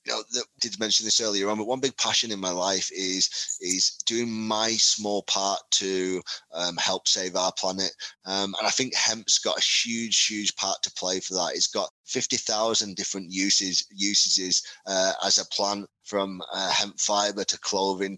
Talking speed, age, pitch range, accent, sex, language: 190 wpm, 20-39, 95-110 Hz, British, male, English